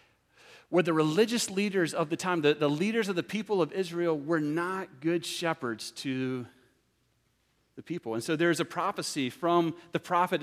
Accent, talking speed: American, 175 wpm